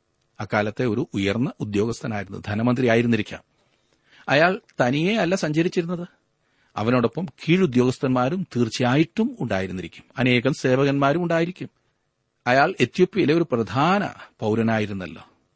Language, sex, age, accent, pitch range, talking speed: Malayalam, male, 40-59, native, 100-135 Hz, 75 wpm